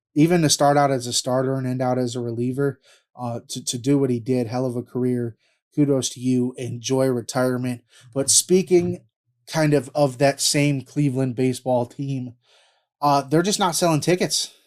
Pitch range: 120-135 Hz